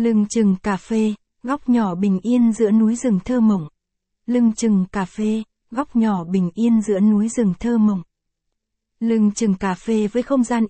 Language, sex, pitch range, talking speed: Vietnamese, female, 200-235 Hz, 185 wpm